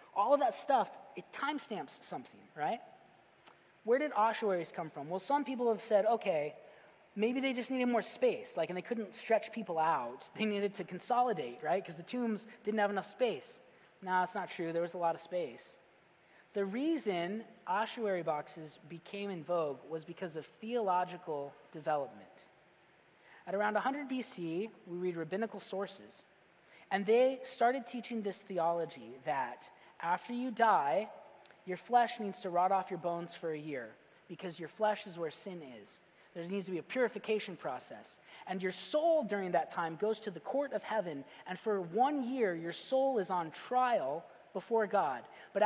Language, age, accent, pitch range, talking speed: English, 30-49, American, 175-240 Hz, 175 wpm